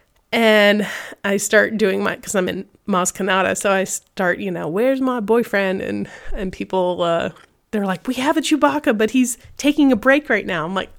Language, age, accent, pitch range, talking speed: English, 30-49, American, 185-225 Hz, 195 wpm